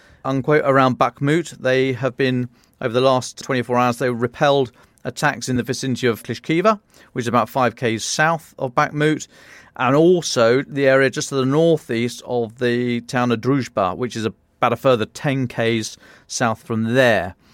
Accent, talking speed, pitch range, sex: British, 170 wpm, 115-130 Hz, male